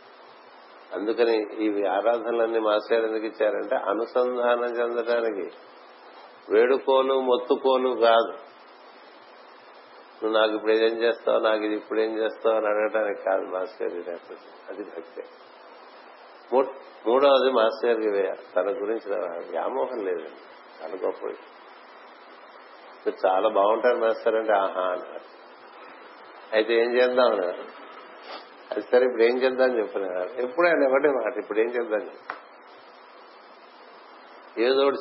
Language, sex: Telugu, male